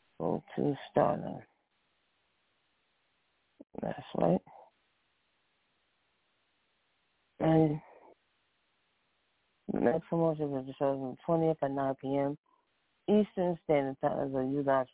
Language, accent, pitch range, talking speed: English, American, 130-170 Hz, 90 wpm